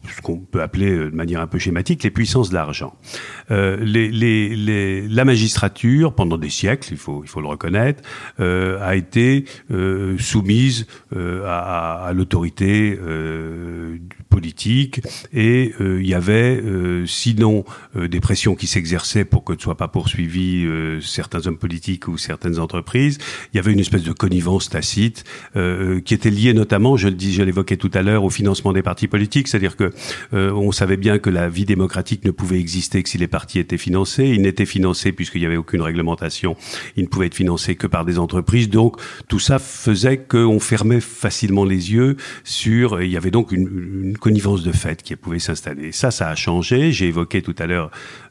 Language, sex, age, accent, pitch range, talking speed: French, male, 50-69, French, 90-110 Hz, 195 wpm